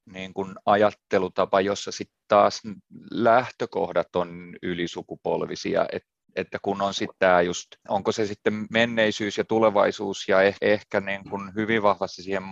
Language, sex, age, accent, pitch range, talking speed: Finnish, male, 30-49, native, 90-100 Hz, 135 wpm